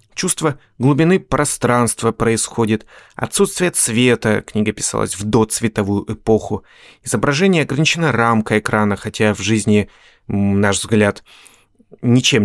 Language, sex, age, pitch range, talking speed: Russian, male, 30-49, 105-140 Hz, 100 wpm